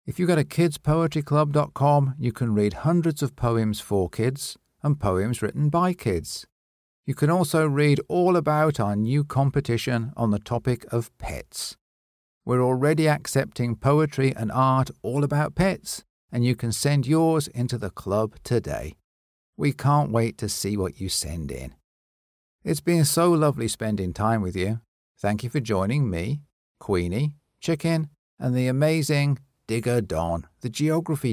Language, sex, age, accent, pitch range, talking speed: English, male, 50-69, British, 100-150 Hz, 155 wpm